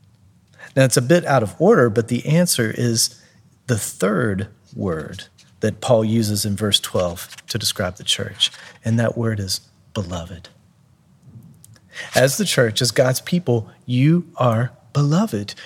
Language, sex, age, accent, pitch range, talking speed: English, male, 40-59, American, 110-150 Hz, 145 wpm